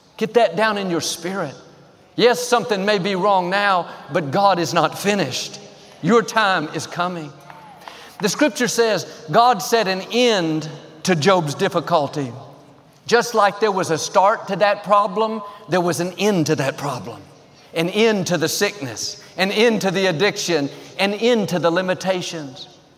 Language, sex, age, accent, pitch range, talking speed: English, male, 50-69, American, 160-215 Hz, 160 wpm